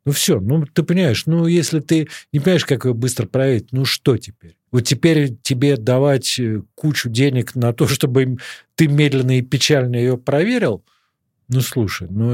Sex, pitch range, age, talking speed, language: male, 115-160 Hz, 40-59, 170 wpm, Russian